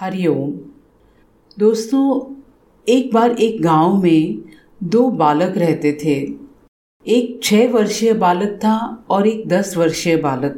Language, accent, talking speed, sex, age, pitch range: Hindi, native, 120 wpm, female, 40-59, 165-250 Hz